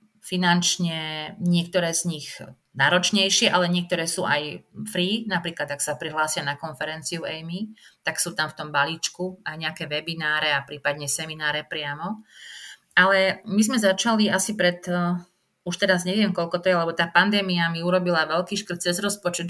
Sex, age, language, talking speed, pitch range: female, 30-49, Slovak, 160 wpm, 160-185 Hz